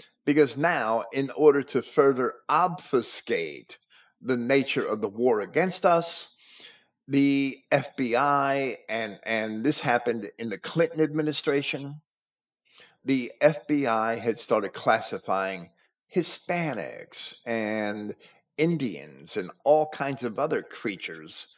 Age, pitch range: 50-69, 120-165 Hz